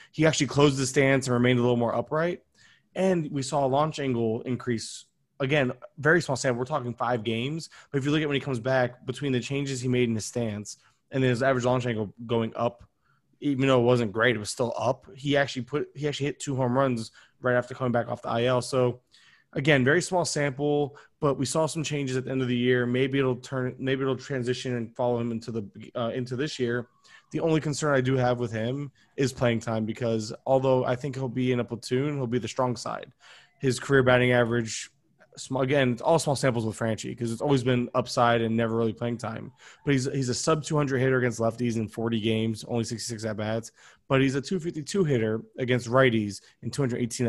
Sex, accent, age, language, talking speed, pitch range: male, American, 20-39, English, 220 wpm, 120-140 Hz